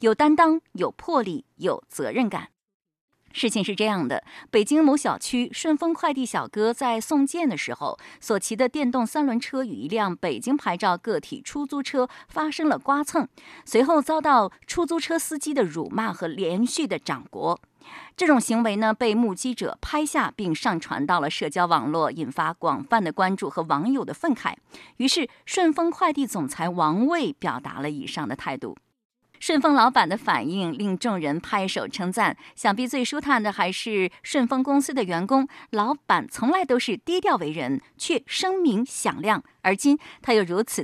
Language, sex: Chinese, female